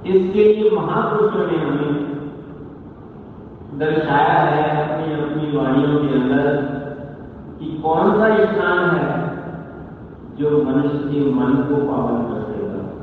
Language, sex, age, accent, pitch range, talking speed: Hindi, male, 50-69, native, 130-155 Hz, 105 wpm